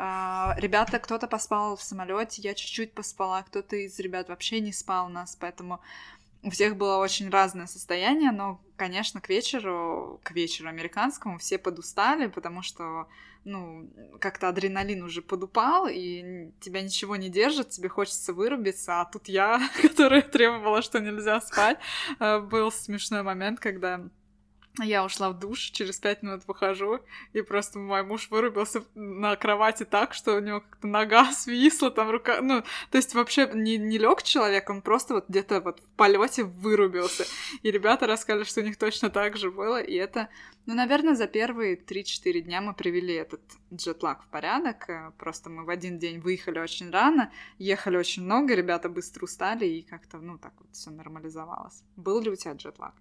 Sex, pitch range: female, 185-225 Hz